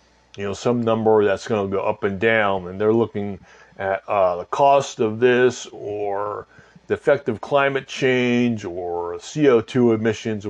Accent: American